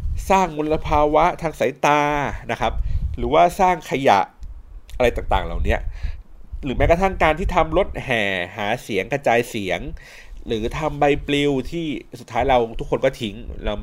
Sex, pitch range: male, 95-145 Hz